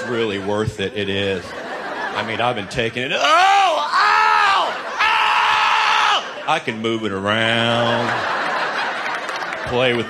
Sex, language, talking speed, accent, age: male, English, 125 wpm, American, 40-59